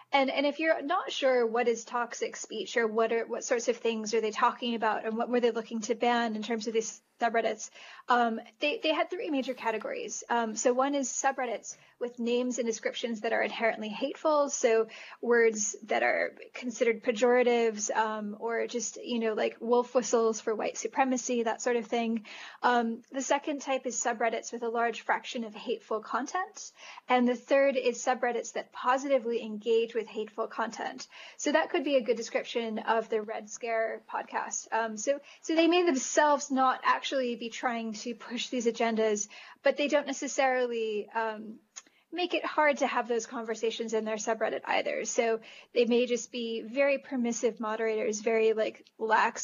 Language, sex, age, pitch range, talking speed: English, female, 10-29, 225-265 Hz, 185 wpm